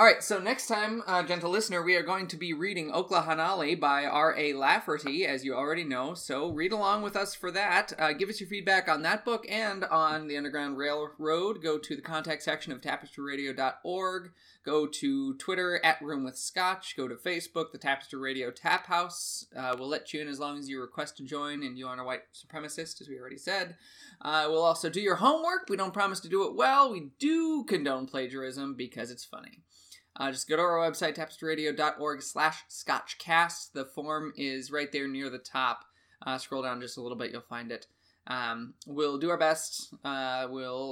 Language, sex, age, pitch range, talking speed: English, male, 20-39, 140-185 Hz, 200 wpm